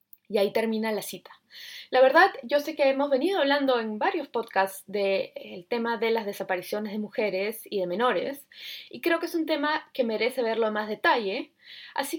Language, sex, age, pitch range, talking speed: Spanish, female, 20-39, 200-270 Hz, 195 wpm